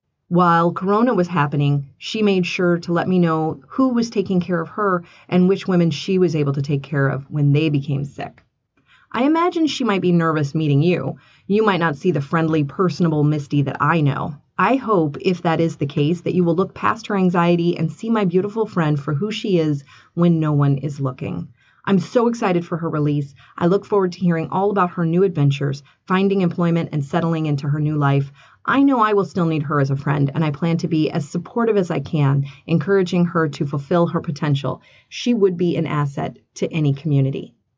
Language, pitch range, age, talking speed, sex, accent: English, 145-180 Hz, 30-49, 215 wpm, female, American